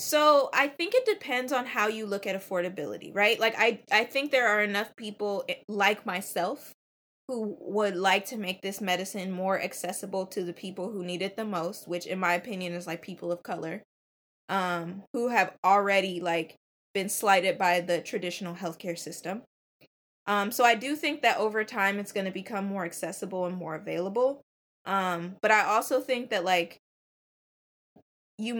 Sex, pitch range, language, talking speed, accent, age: female, 185-225 Hz, English, 175 wpm, American, 20-39